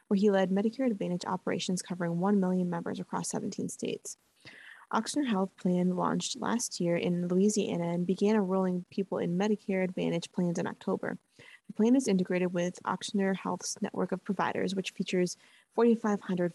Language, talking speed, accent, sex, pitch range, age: English, 160 wpm, American, female, 180-215 Hz, 20-39